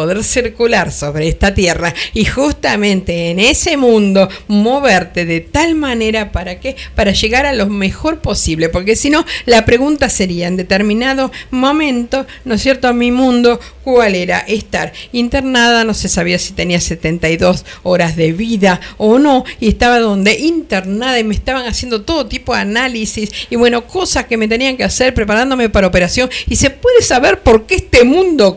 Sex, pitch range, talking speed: female, 200-265 Hz, 175 wpm